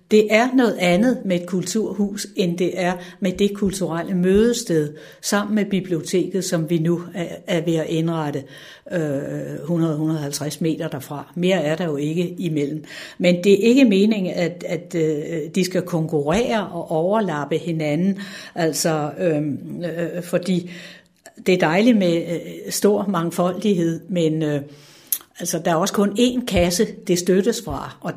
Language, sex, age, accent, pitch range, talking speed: Danish, female, 60-79, native, 160-195 Hz, 135 wpm